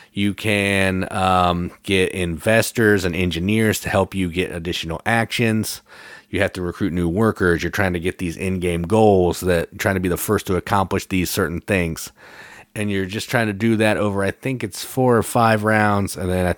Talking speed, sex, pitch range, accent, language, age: 200 wpm, male, 90-110 Hz, American, English, 30-49